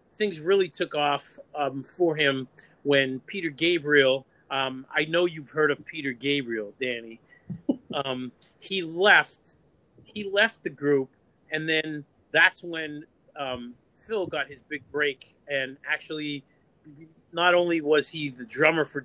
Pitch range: 135-160 Hz